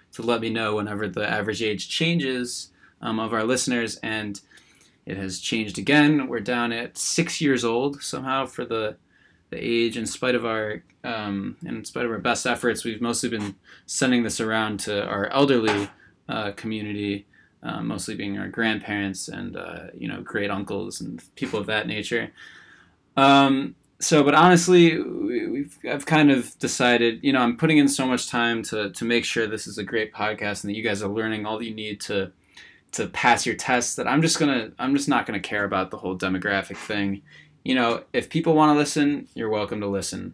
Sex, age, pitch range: male, 20-39, 105-145 Hz